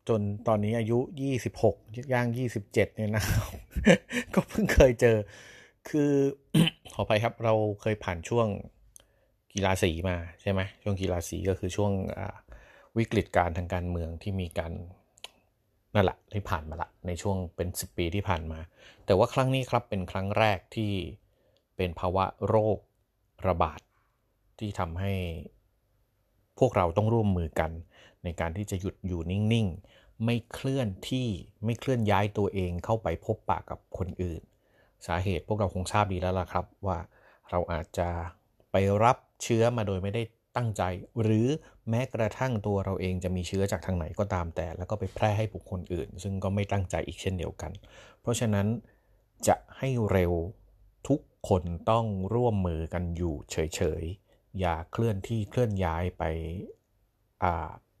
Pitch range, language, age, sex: 90-110 Hz, Thai, 30-49, male